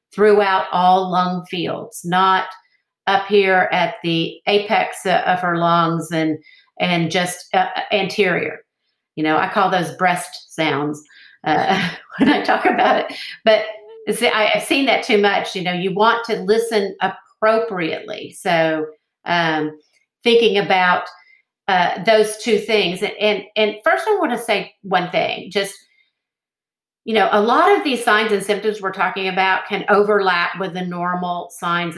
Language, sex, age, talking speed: English, female, 50-69, 155 wpm